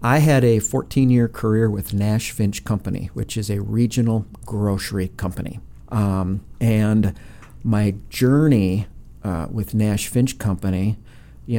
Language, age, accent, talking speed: English, 50-69, American, 135 wpm